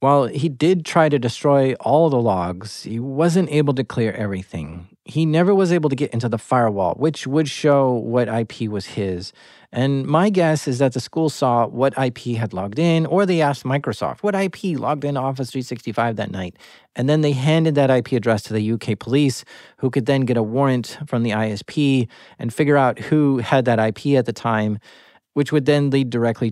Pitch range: 115-145 Hz